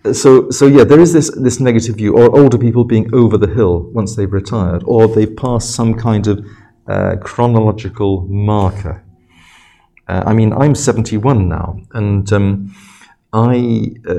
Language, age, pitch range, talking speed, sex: Czech, 40-59, 95-115 Hz, 160 wpm, male